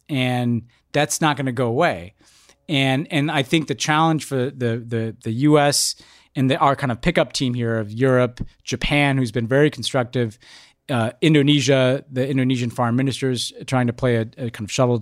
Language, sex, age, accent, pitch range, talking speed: English, male, 30-49, American, 120-145 Hz, 190 wpm